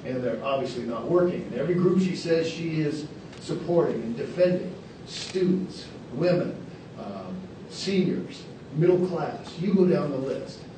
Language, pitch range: English, 135-180 Hz